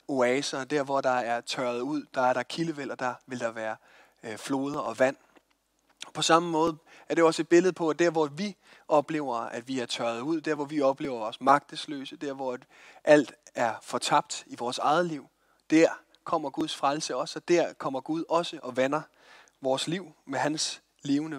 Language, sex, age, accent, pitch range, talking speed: Danish, male, 30-49, native, 135-170 Hz, 200 wpm